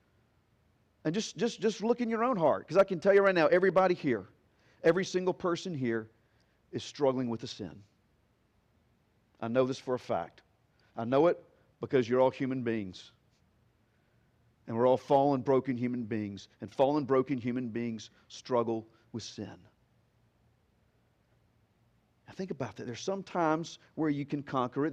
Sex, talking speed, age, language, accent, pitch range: male, 165 wpm, 40-59, English, American, 120-180 Hz